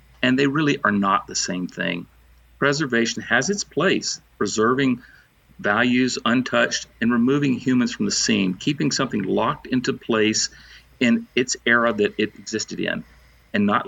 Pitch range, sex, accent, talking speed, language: 105-140 Hz, male, American, 150 wpm, English